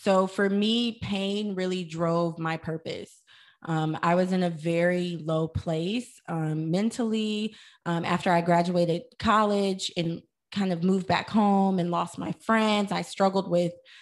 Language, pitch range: English, 175-205 Hz